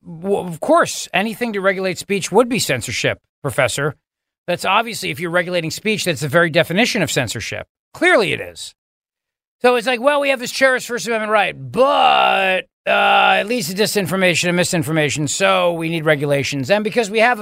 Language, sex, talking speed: English, male, 185 wpm